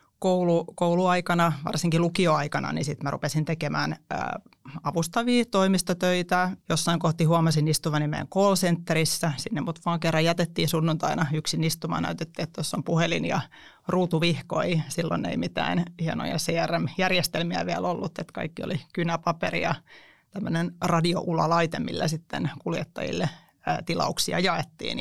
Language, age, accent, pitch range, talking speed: Finnish, 30-49, native, 160-180 Hz, 130 wpm